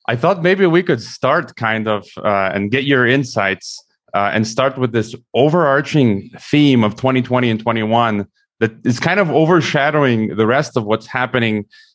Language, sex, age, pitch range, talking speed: English, male, 30-49, 105-130 Hz, 170 wpm